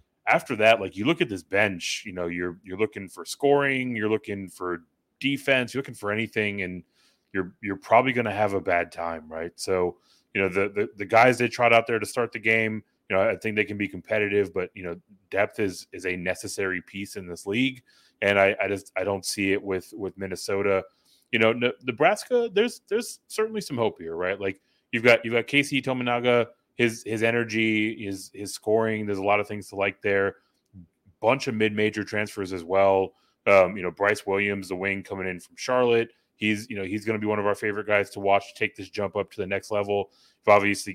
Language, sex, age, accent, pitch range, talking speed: English, male, 30-49, American, 95-110 Hz, 225 wpm